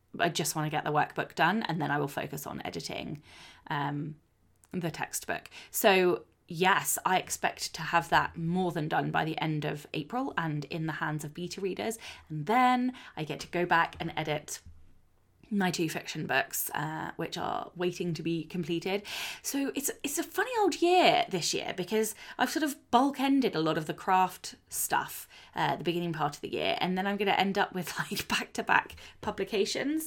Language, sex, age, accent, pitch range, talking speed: English, female, 20-39, British, 160-225 Hz, 200 wpm